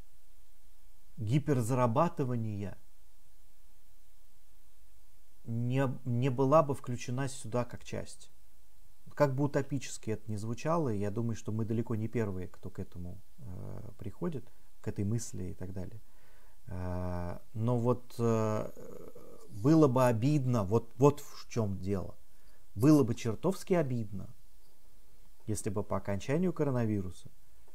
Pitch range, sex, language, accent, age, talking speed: 95-125 Hz, male, Russian, native, 40-59, 115 wpm